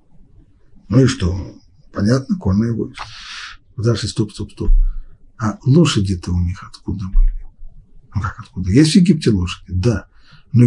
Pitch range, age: 105-145 Hz, 50-69